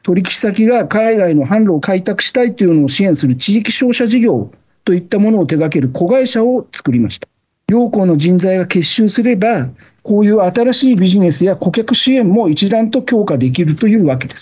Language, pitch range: Japanese, 150-225 Hz